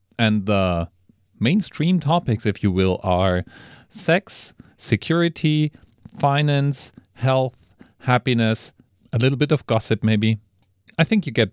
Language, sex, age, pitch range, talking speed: English, male, 40-59, 95-130 Hz, 120 wpm